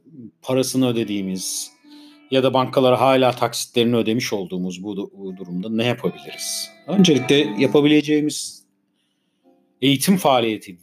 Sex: male